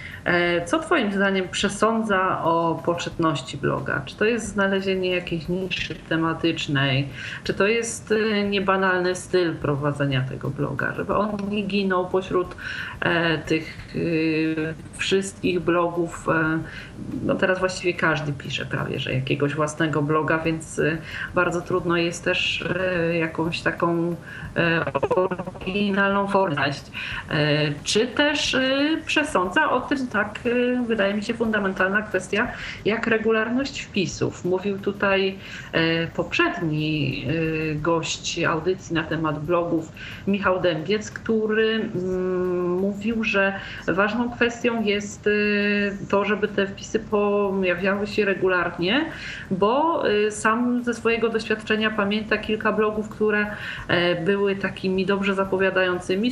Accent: native